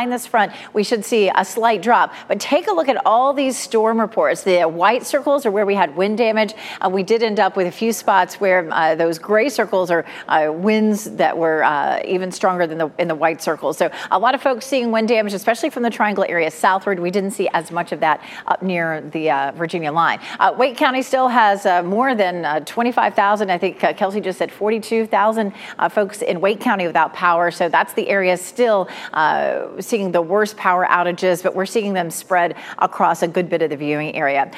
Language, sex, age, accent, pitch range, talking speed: English, female, 40-59, American, 175-235 Hz, 220 wpm